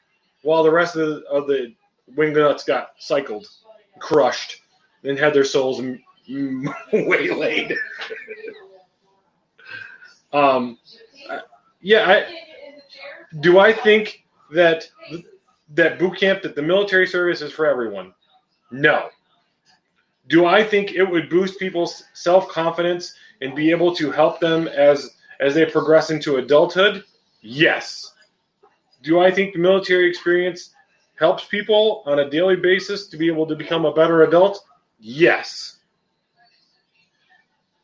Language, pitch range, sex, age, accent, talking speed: English, 155-205 Hz, male, 30-49, American, 120 wpm